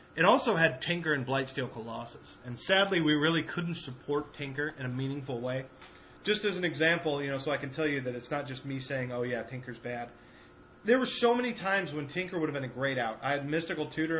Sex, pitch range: male, 135-175 Hz